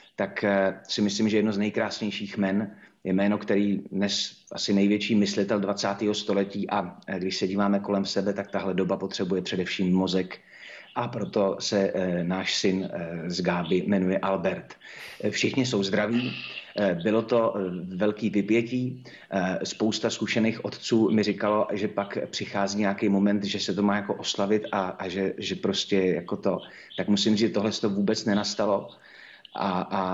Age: 30-49